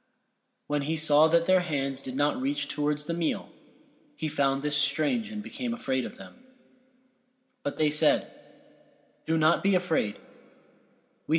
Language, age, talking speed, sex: English, 20-39, 155 wpm, male